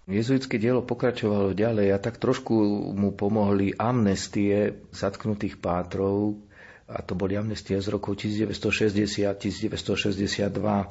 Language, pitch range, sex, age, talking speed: Slovak, 95-105 Hz, male, 40-59, 110 wpm